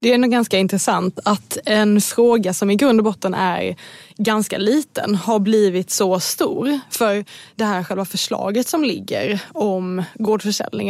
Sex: female